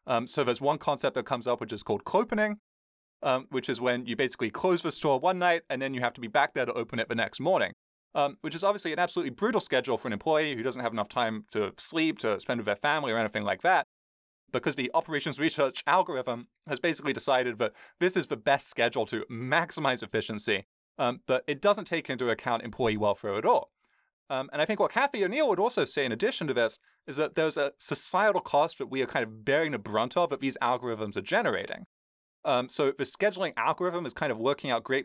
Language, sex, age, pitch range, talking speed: English, male, 20-39, 115-160 Hz, 235 wpm